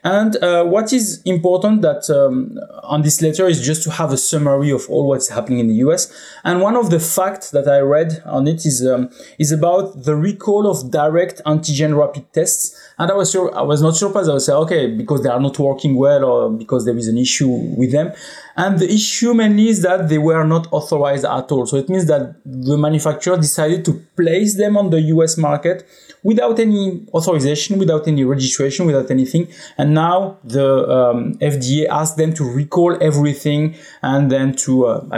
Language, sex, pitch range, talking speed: English, male, 135-175 Hz, 200 wpm